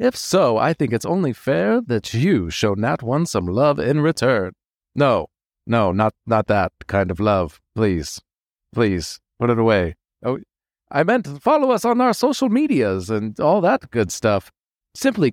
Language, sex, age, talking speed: English, male, 30-49, 170 wpm